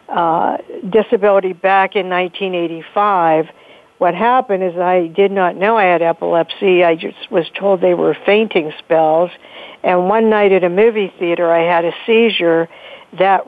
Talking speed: 155 wpm